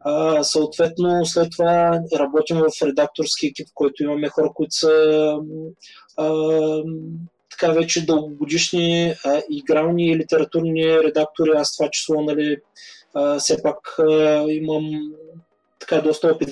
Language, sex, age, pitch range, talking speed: Bulgarian, male, 20-39, 145-170 Hz, 125 wpm